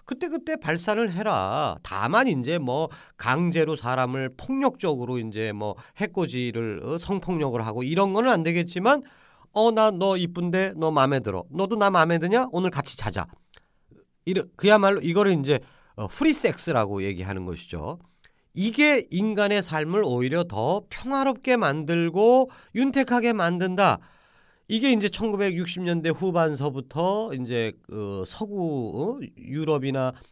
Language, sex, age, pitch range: Korean, male, 40-59, 125-200 Hz